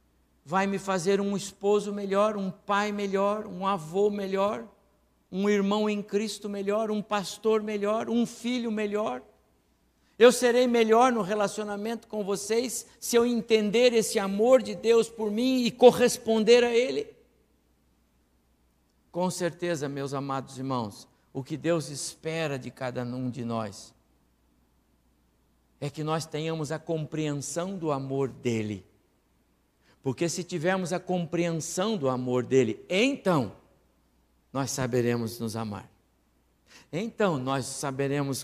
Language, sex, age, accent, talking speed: Portuguese, male, 60-79, Brazilian, 130 wpm